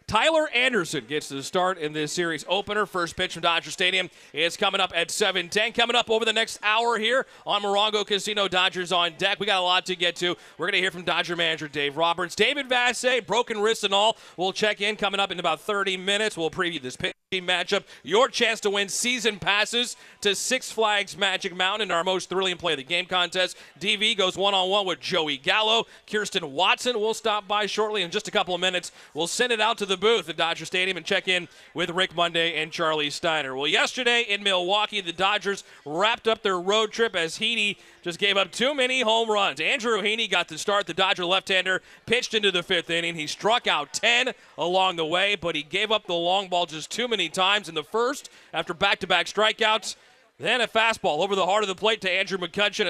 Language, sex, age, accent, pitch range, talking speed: English, male, 40-59, American, 175-220 Hz, 225 wpm